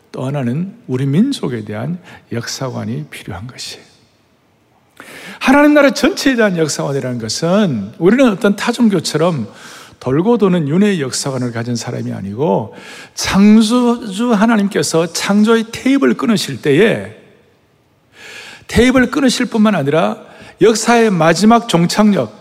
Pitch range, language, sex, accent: 135-215 Hz, Korean, male, native